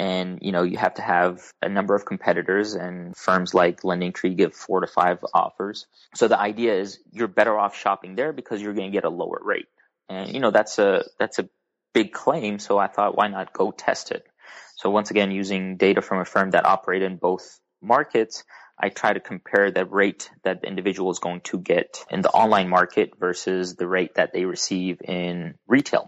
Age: 20-39